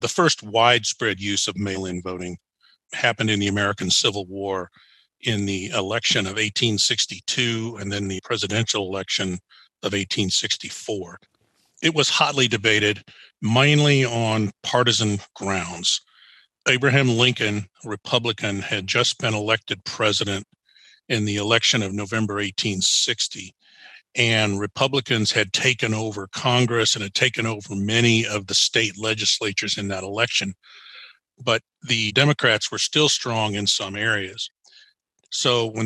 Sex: male